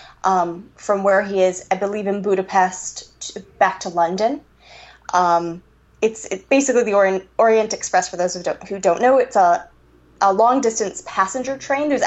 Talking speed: 165 wpm